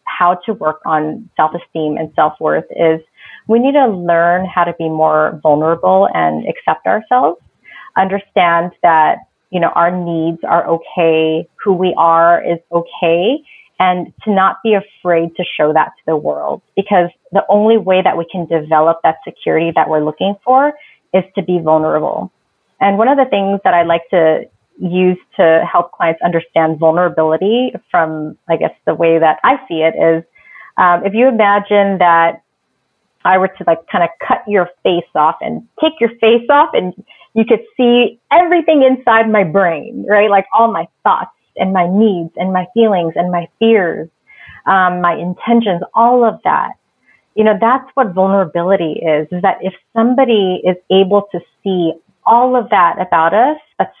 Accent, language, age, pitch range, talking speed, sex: American, English, 30-49, 165-215 Hz, 170 wpm, female